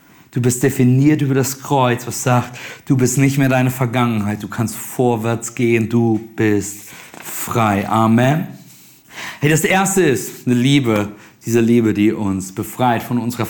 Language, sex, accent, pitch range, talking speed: German, male, German, 140-175 Hz, 155 wpm